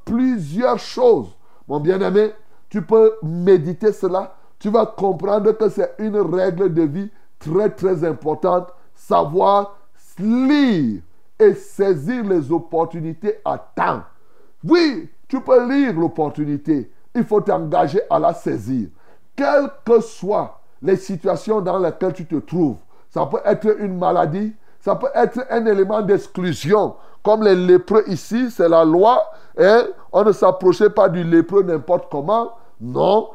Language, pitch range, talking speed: French, 180-230 Hz, 140 wpm